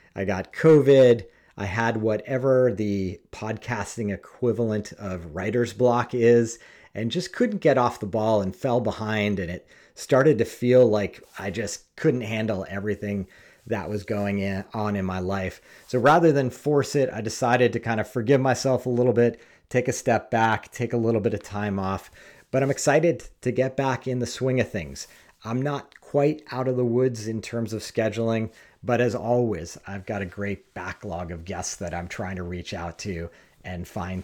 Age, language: 40-59, English